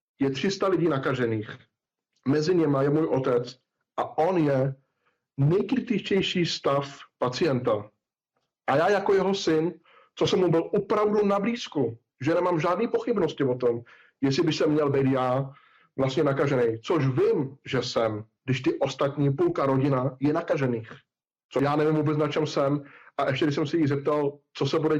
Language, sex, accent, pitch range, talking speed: Czech, male, native, 130-155 Hz, 165 wpm